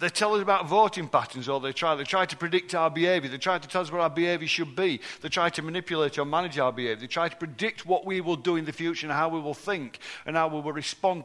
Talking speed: 290 wpm